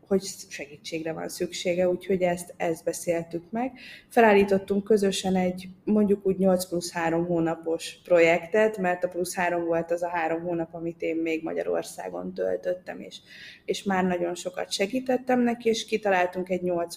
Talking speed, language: 155 wpm, Hungarian